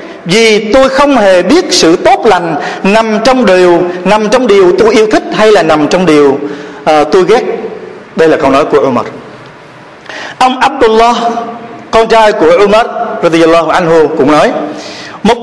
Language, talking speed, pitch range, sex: Vietnamese, 165 wpm, 195-265 Hz, male